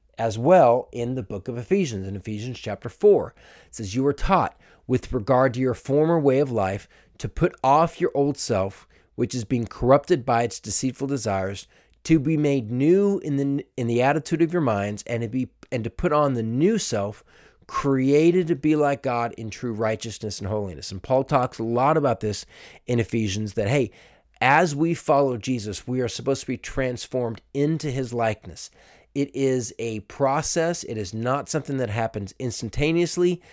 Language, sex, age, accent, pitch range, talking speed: English, male, 40-59, American, 110-140 Hz, 190 wpm